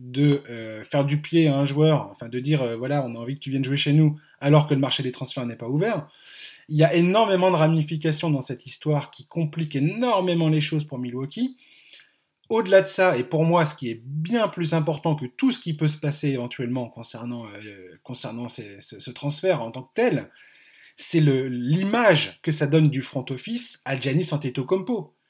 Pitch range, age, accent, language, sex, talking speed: 140-165 Hz, 20-39, French, French, male, 210 wpm